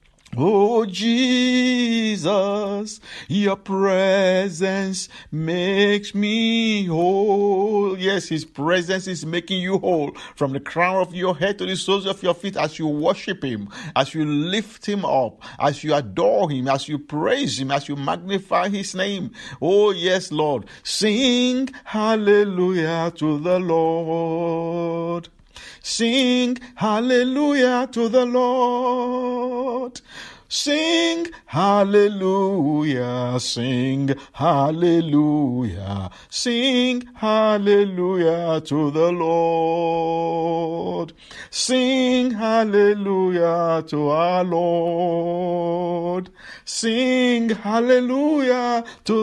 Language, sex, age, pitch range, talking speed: English, male, 50-69, 165-230 Hz, 95 wpm